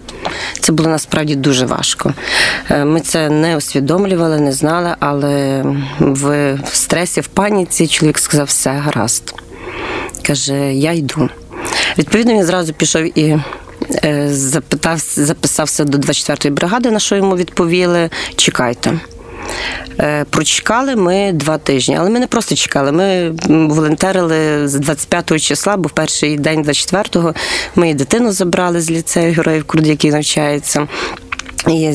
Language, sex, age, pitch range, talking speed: Ukrainian, female, 30-49, 145-175 Hz, 125 wpm